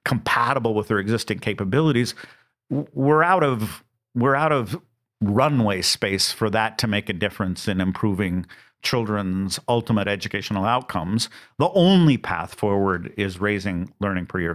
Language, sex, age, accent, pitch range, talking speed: English, male, 50-69, American, 100-125 Hz, 140 wpm